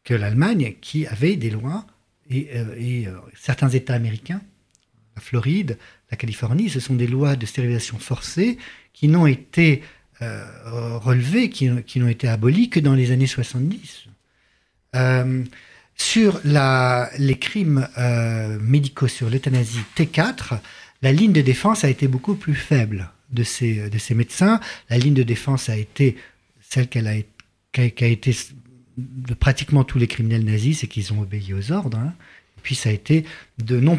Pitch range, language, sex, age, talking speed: 120-150 Hz, French, male, 50-69, 160 wpm